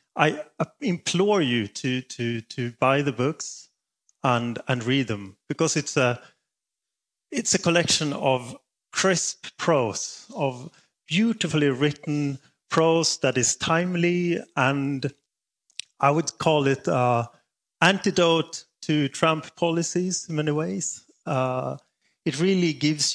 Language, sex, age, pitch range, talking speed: English, male, 30-49, 120-160 Hz, 120 wpm